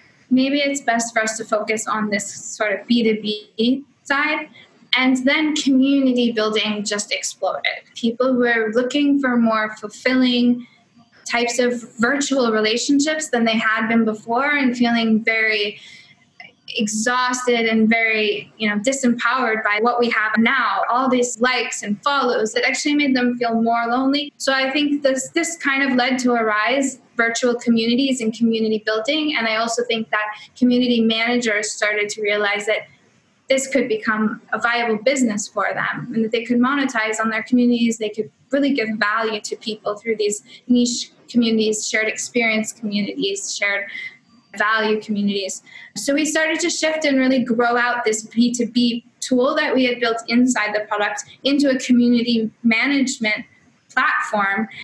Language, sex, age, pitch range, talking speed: English, female, 20-39, 220-255 Hz, 160 wpm